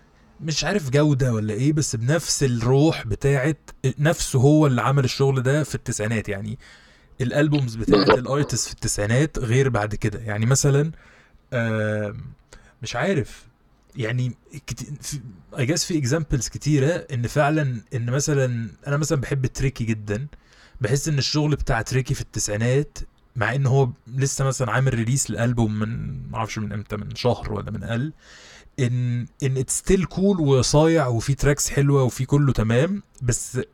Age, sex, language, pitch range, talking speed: 20-39, male, Arabic, 110-140 Hz, 145 wpm